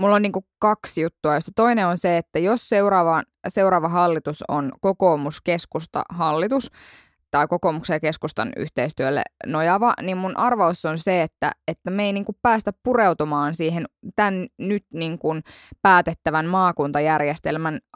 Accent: native